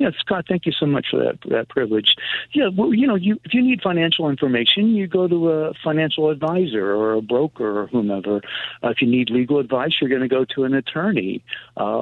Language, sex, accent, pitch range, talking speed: English, male, American, 115-165 Hz, 220 wpm